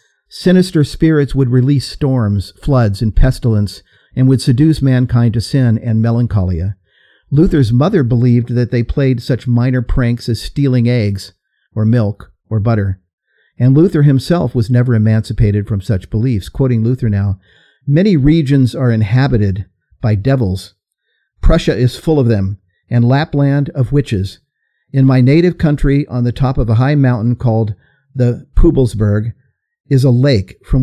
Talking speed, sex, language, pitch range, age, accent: 150 wpm, male, English, 110-140 Hz, 50-69, American